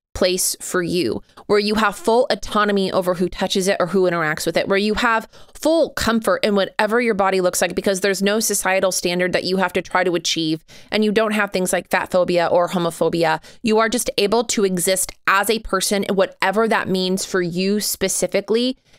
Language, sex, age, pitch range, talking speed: English, female, 20-39, 175-205 Hz, 210 wpm